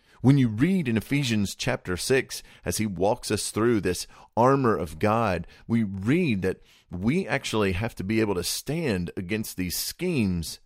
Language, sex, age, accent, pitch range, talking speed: English, male, 40-59, American, 90-120 Hz, 170 wpm